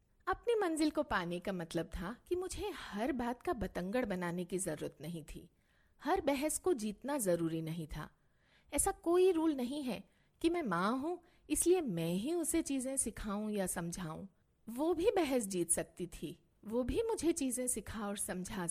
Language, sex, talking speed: Hindi, female, 175 wpm